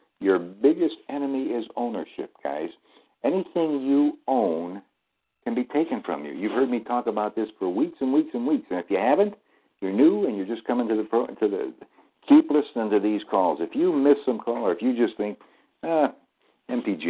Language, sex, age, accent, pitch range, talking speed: English, male, 60-79, American, 105-170 Hz, 205 wpm